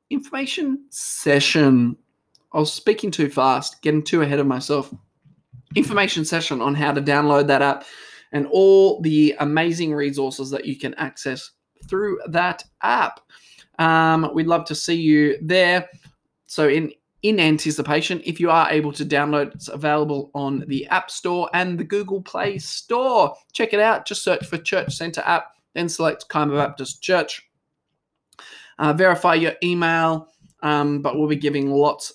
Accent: Australian